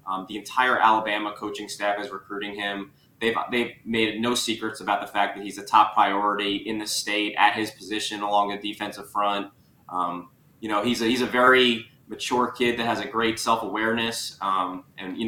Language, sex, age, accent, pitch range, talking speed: English, male, 20-39, American, 105-120 Hz, 195 wpm